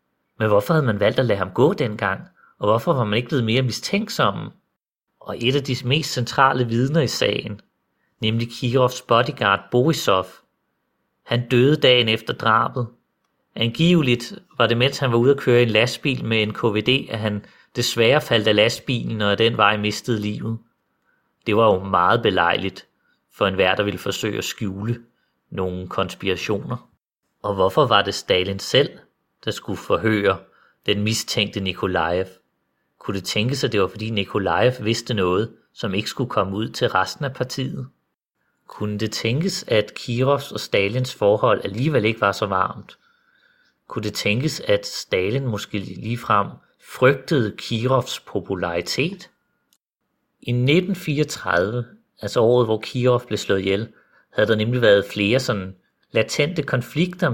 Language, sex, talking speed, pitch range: Danish, male, 155 wpm, 105-135 Hz